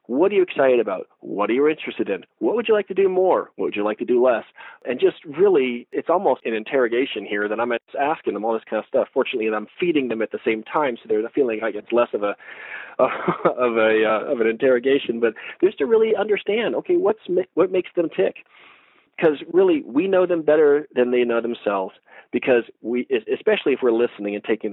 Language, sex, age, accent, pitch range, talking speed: English, male, 40-59, American, 110-170 Hz, 225 wpm